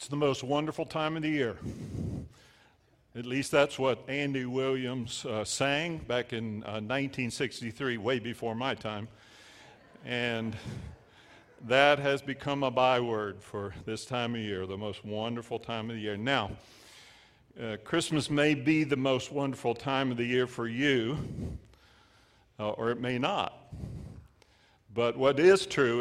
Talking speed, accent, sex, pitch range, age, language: 150 wpm, American, male, 110-135 Hz, 50-69, English